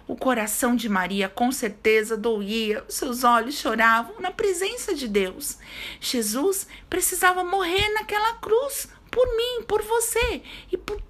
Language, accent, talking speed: Portuguese, Brazilian, 135 wpm